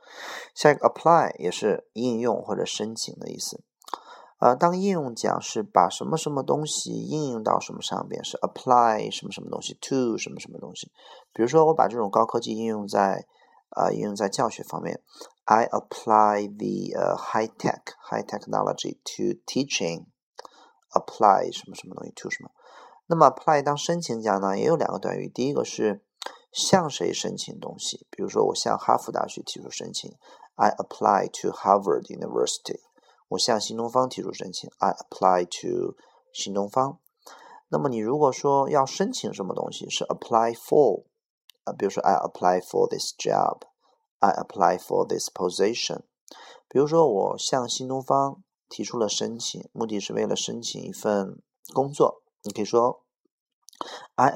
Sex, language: male, Chinese